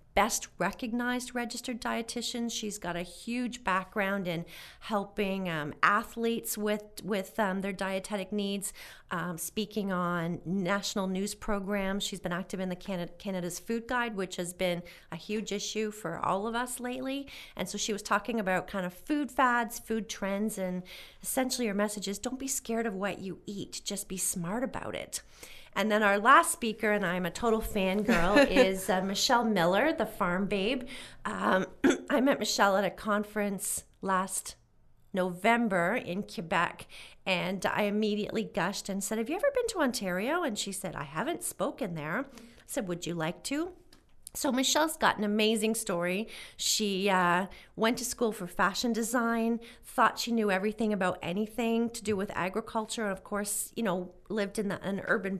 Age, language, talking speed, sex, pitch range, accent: 40-59, English, 175 wpm, female, 190-230 Hz, American